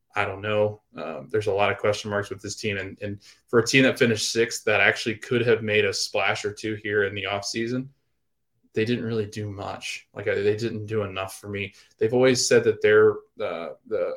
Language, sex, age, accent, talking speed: English, male, 20-39, American, 235 wpm